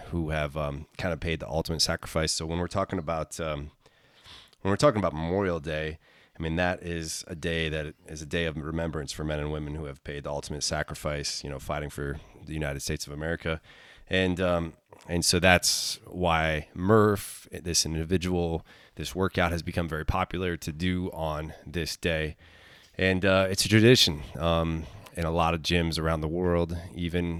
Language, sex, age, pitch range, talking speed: English, male, 20-39, 80-95 Hz, 190 wpm